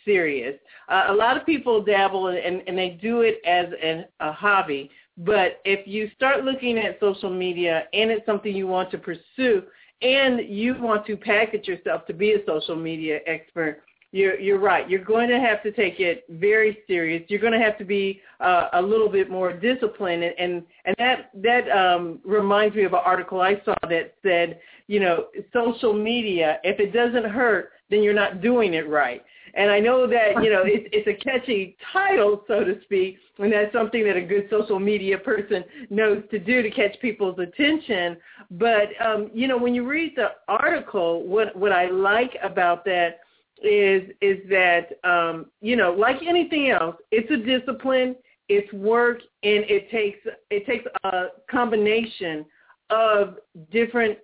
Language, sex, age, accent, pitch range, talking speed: English, female, 50-69, American, 185-230 Hz, 180 wpm